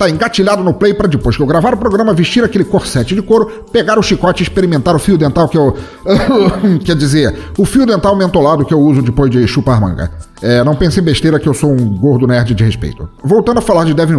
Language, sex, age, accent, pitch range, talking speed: Portuguese, male, 40-59, Brazilian, 135-210 Hz, 240 wpm